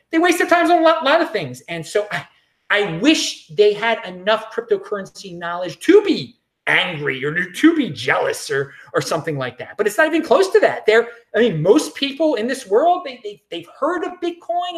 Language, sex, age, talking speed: English, male, 30-49, 220 wpm